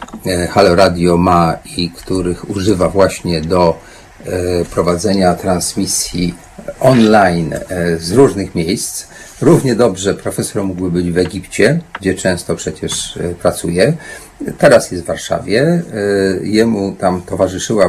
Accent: native